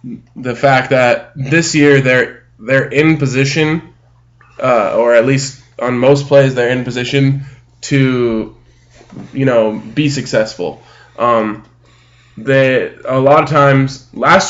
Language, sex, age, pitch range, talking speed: English, male, 10-29, 120-140 Hz, 130 wpm